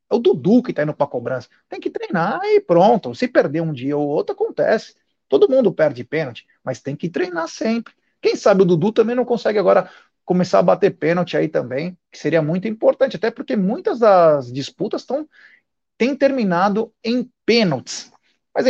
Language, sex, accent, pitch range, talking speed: Portuguese, male, Brazilian, 150-220 Hz, 185 wpm